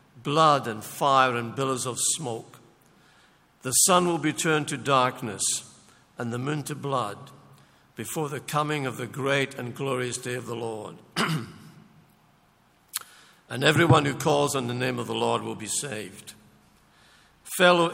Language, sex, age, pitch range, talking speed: English, male, 60-79, 120-150 Hz, 150 wpm